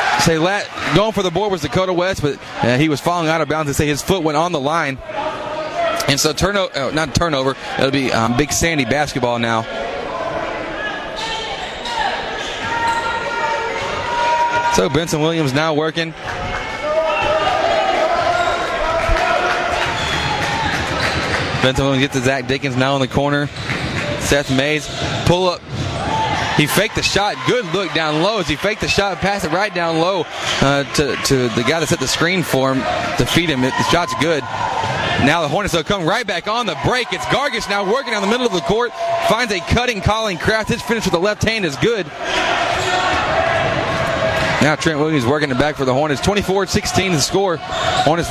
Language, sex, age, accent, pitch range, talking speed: English, male, 20-39, American, 140-215 Hz, 170 wpm